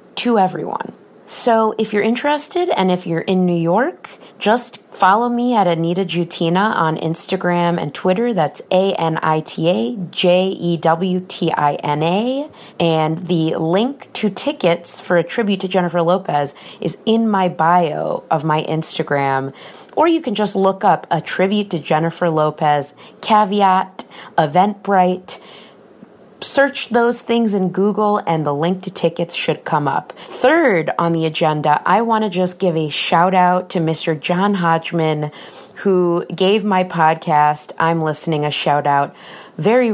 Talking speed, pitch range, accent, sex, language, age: 140 wpm, 155-200 Hz, American, female, English, 30-49